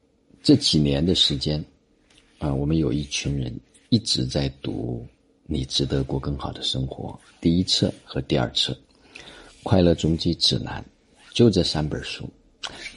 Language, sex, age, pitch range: Chinese, male, 50-69, 70-105 Hz